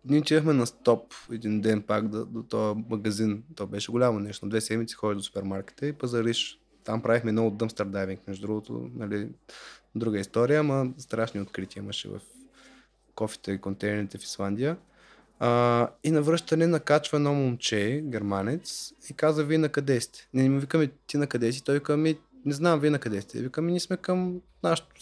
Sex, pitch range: male, 110-155 Hz